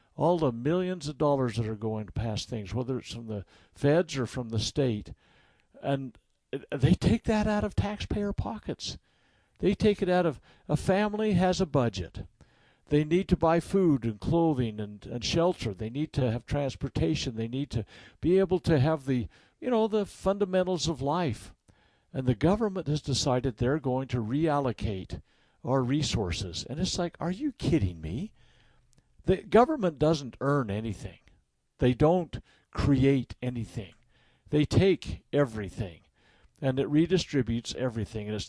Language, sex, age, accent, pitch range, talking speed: English, male, 60-79, American, 110-165 Hz, 160 wpm